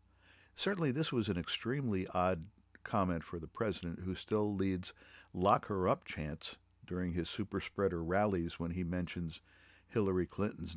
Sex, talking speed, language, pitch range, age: male, 135 wpm, English, 85-100 Hz, 50-69